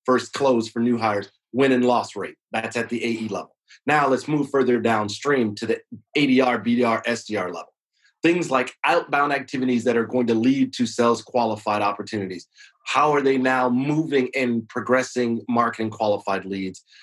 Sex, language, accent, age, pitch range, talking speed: male, English, American, 30-49, 115-150 Hz, 170 wpm